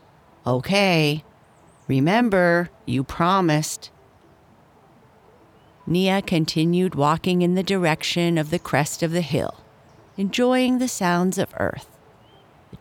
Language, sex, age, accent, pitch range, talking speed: English, female, 50-69, American, 145-185 Hz, 105 wpm